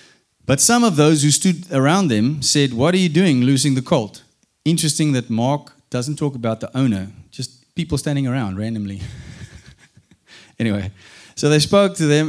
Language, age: English, 30-49